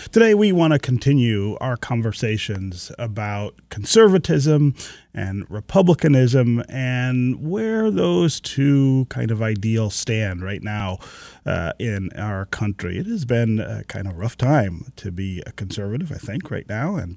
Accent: American